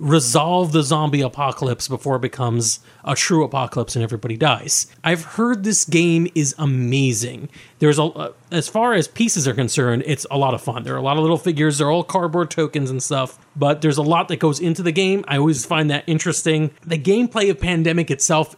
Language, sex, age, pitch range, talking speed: English, male, 30-49, 135-170 Hz, 205 wpm